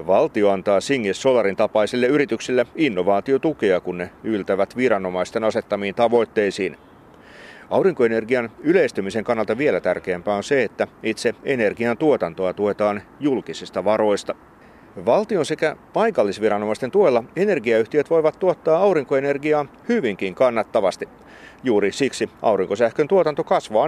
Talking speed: 105 wpm